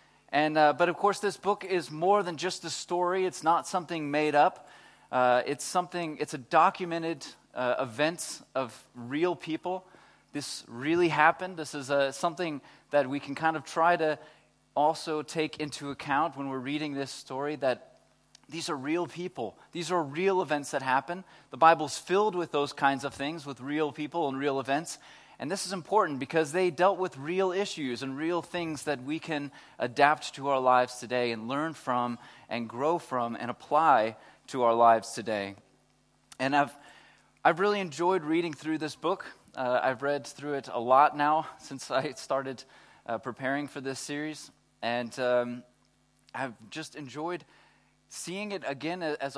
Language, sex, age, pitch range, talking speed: English, male, 30-49, 135-170 Hz, 180 wpm